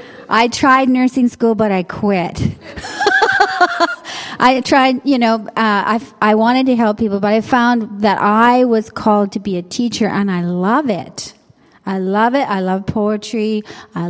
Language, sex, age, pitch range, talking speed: English, female, 40-59, 200-245 Hz, 170 wpm